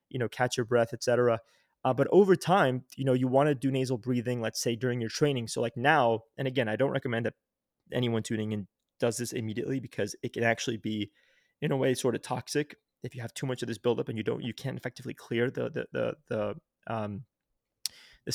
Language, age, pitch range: English, 20-39, 120-150 Hz